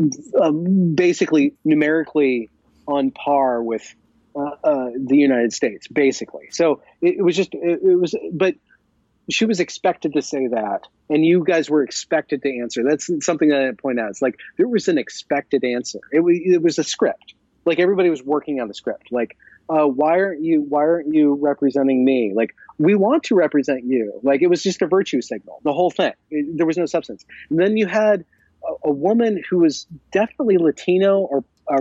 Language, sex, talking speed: English, male, 195 wpm